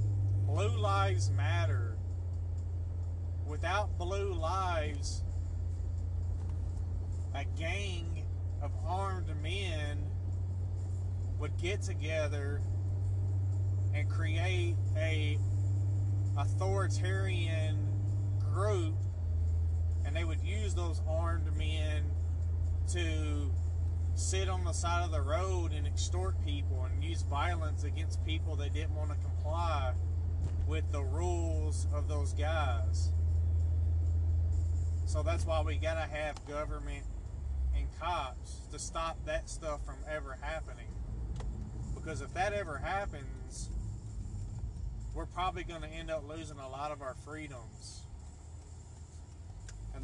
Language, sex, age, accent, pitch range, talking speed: English, male, 30-49, American, 85-95 Hz, 105 wpm